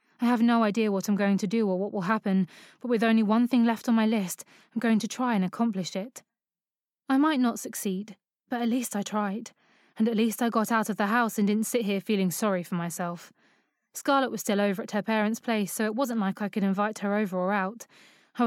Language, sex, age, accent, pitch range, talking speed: English, female, 20-39, British, 200-240 Hz, 245 wpm